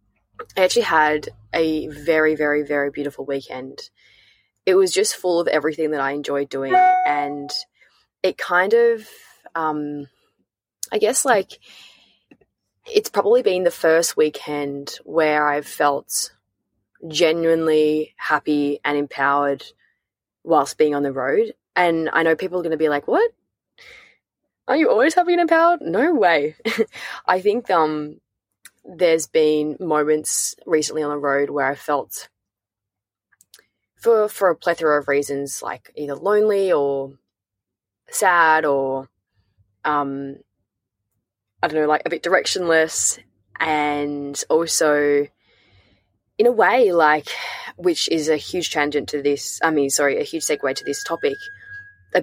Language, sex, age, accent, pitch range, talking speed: English, female, 20-39, Australian, 140-170 Hz, 135 wpm